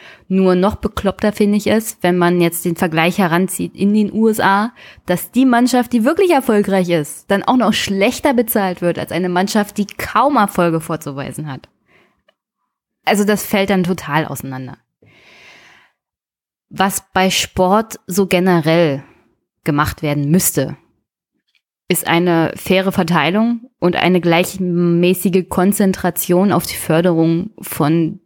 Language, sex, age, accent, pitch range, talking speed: German, female, 20-39, German, 165-195 Hz, 130 wpm